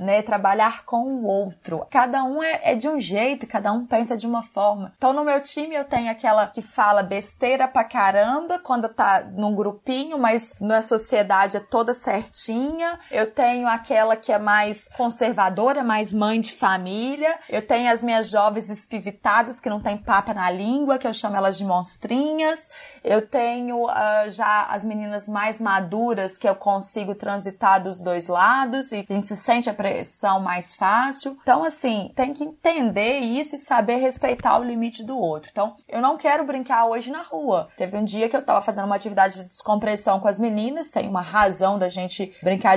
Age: 20-39